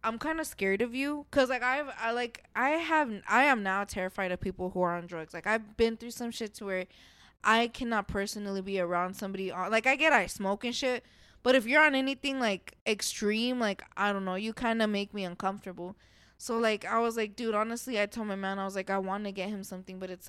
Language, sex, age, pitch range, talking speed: English, female, 20-39, 190-230 Hz, 250 wpm